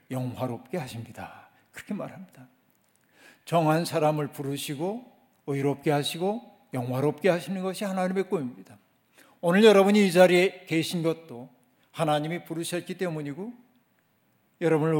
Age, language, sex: 50-69, Korean, male